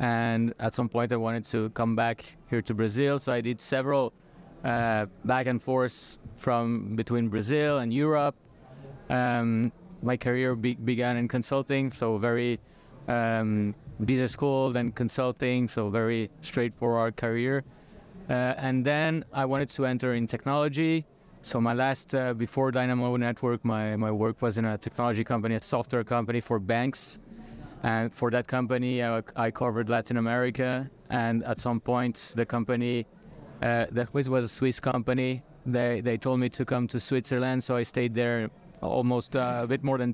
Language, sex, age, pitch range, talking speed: English, male, 20-39, 115-130 Hz, 165 wpm